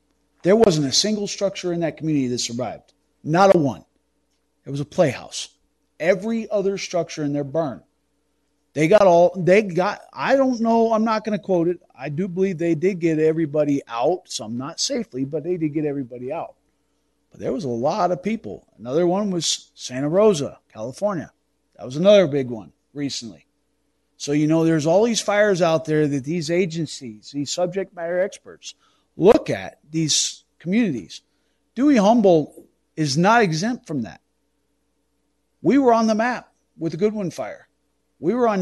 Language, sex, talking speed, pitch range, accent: English, male, 175 wpm, 150-200 Hz, American